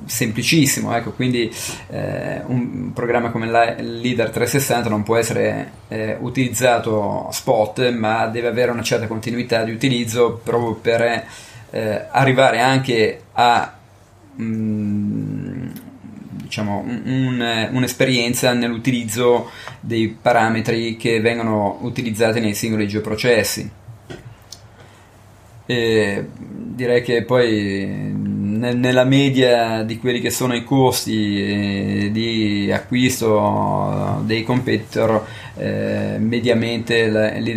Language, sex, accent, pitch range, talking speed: Italian, male, native, 110-120 Hz, 95 wpm